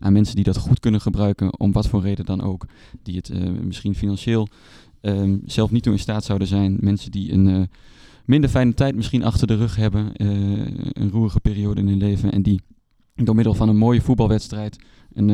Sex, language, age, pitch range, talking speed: male, Dutch, 20-39, 100-110 Hz, 210 wpm